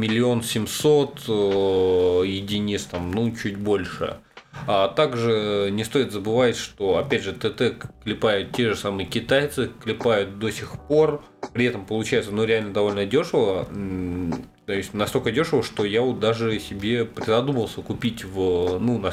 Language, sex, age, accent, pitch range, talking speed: Russian, male, 20-39, native, 100-125 Hz, 145 wpm